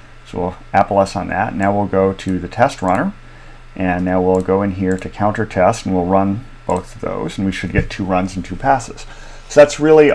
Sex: male